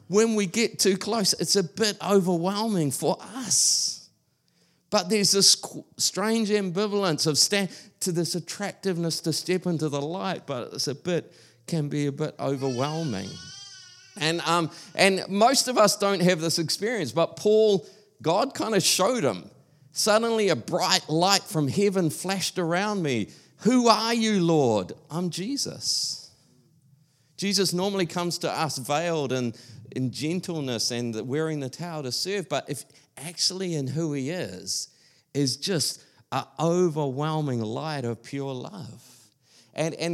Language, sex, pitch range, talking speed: English, male, 140-190 Hz, 150 wpm